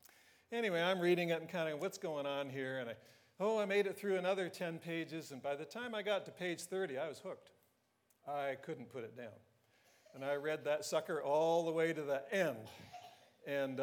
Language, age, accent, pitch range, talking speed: English, 50-69, American, 140-175 Hz, 215 wpm